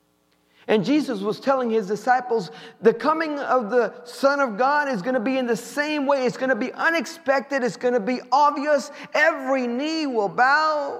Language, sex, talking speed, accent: English, male, 190 wpm, American